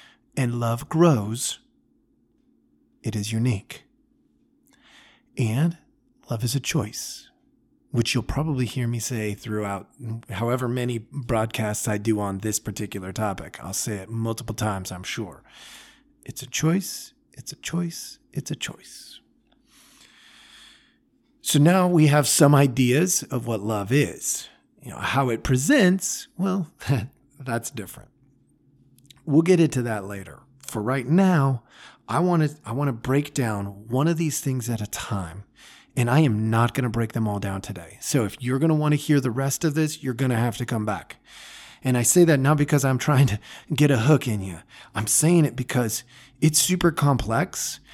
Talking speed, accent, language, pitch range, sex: 165 wpm, American, English, 115-155 Hz, male